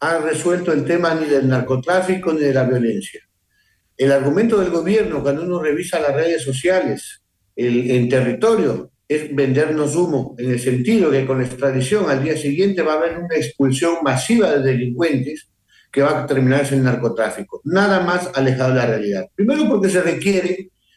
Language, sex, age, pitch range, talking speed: Spanish, male, 60-79, 135-185 Hz, 175 wpm